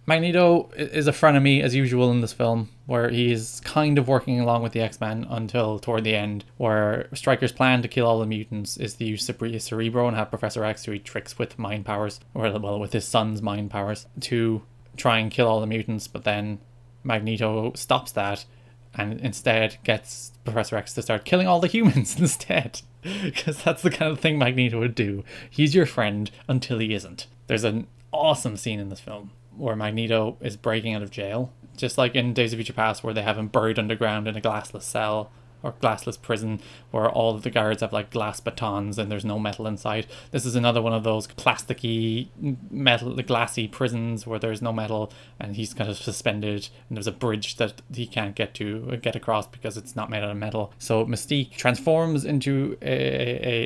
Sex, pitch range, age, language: male, 110-125 Hz, 20-39, English